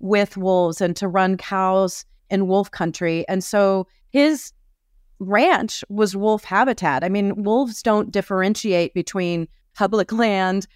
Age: 30-49